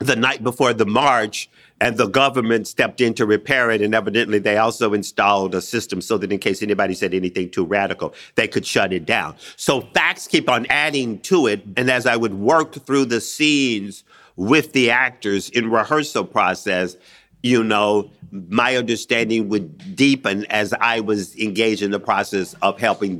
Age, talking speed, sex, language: 50-69, 180 wpm, male, English